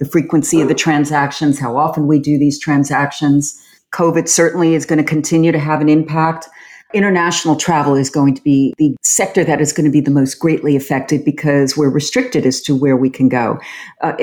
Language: English